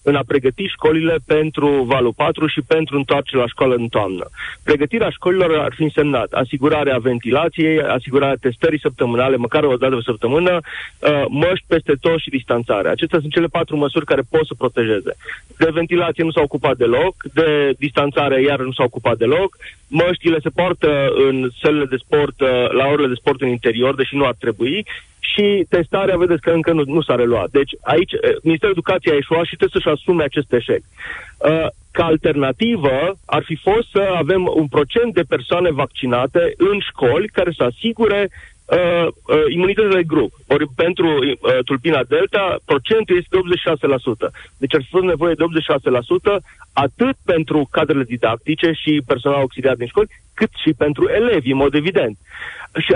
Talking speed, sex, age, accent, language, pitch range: 170 wpm, male, 30-49, native, Romanian, 140-180 Hz